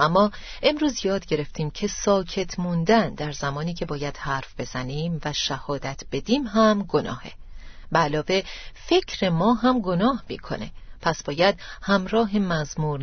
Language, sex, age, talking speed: Persian, female, 40-59, 135 wpm